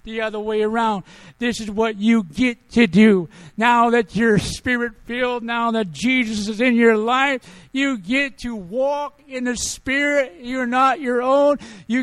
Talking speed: 175 wpm